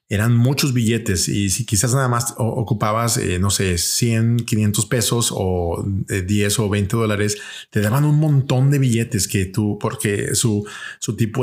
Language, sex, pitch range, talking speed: Spanish, male, 105-125 Hz, 170 wpm